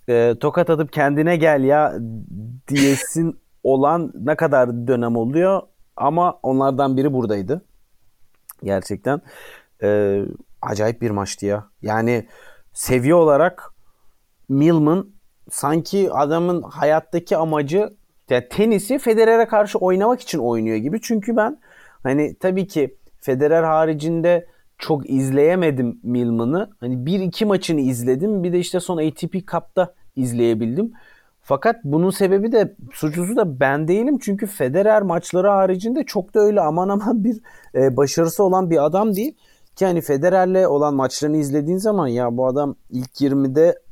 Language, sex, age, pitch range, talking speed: Turkish, male, 30-49, 130-190 Hz, 125 wpm